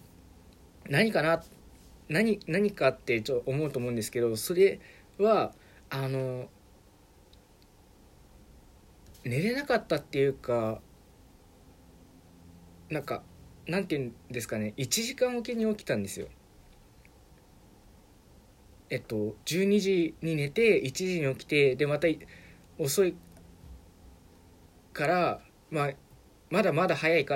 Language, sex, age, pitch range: Japanese, male, 20-39, 100-155 Hz